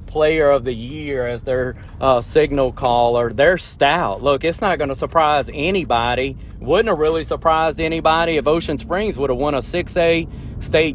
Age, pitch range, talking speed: 30-49, 130-160 Hz, 175 wpm